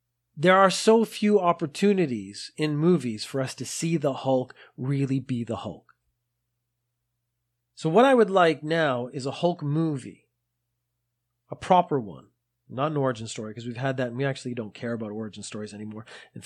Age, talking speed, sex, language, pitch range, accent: 30-49, 175 wpm, male, English, 120-155 Hz, American